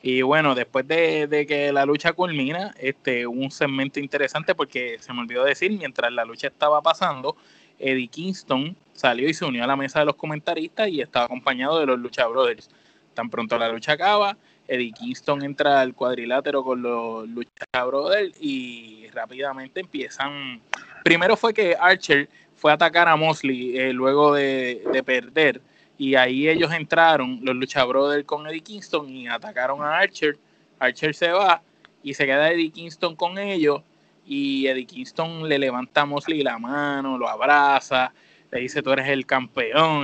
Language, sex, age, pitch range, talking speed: Spanish, male, 20-39, 130-165 Hz, 170 wpm